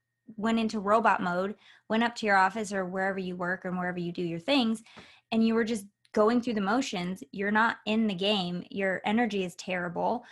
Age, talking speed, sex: 20-39, 210 wpm, female